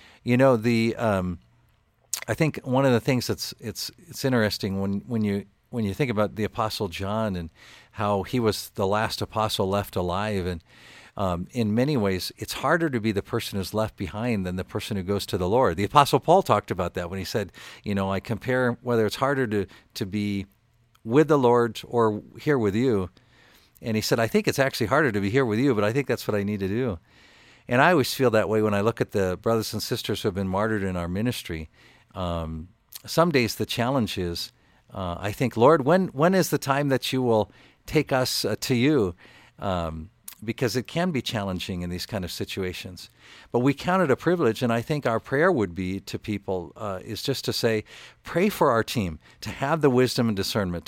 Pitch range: 100-125 Hz